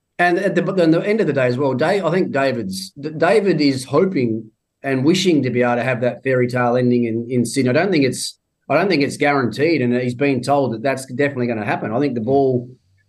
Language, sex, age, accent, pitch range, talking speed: English, male, 30-49, Australian, 120-145 Hz, 255 wpm